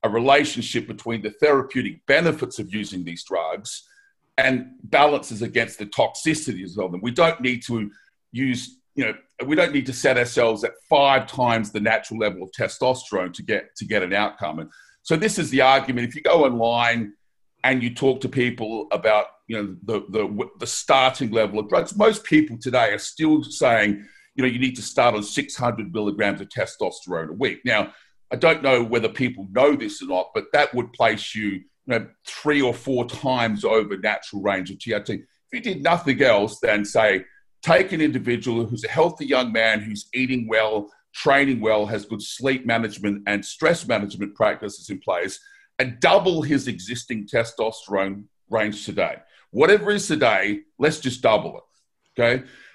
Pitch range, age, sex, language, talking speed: 110-140 Hz, 50-69, male, English, 180 wpm